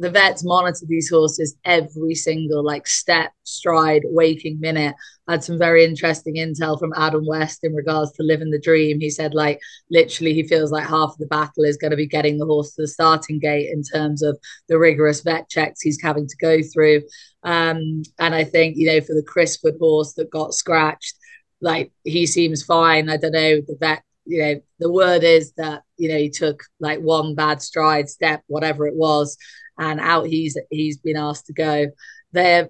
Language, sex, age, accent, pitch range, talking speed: English, female, 20-39, British, 155-165 Hz, 200 wpm